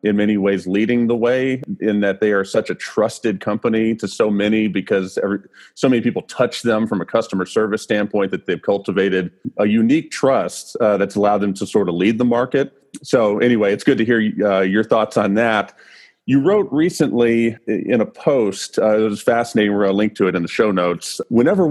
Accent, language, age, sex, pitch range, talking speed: American, English, 40-59, male, 100-120 Hz, 210 wpm